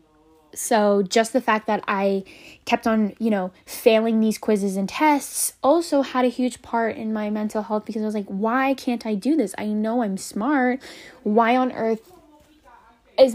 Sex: female